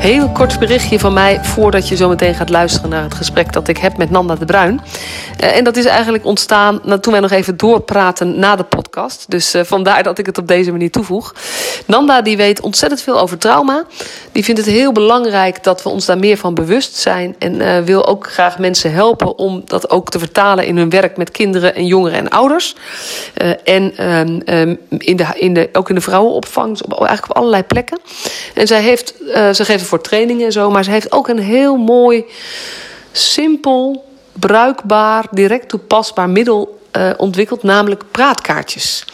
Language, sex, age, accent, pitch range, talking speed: Dutch, female, 40-59, Dutch, 185-240 Hz, 200 wpm